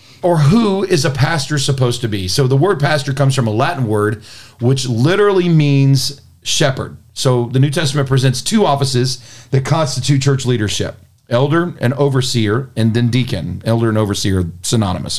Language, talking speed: English, 165 wpm